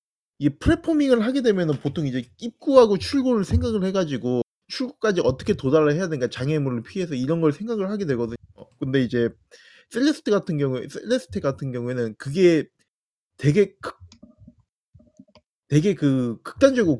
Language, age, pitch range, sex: Korean, 20-39, 130-195 Hz, male